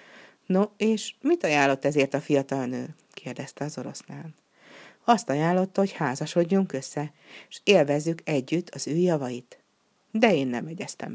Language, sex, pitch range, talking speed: Hungarian, female, 140-190 Hz, 160 wpm